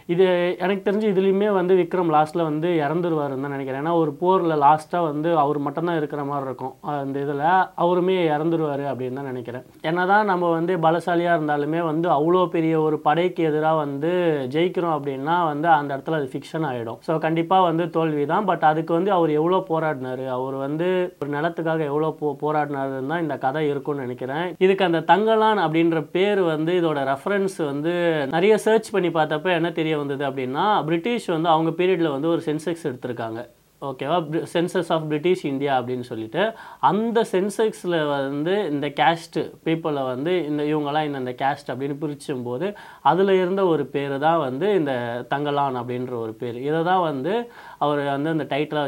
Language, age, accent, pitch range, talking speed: Tamil, 20-39, native, 140-175 Hz, 160 wpm